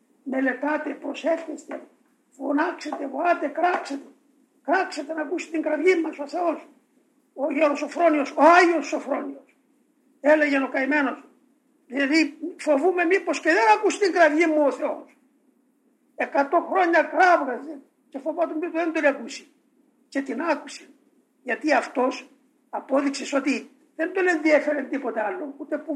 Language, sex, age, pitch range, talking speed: Greek, male, 50-69, 275-315 Hz, 130 wpm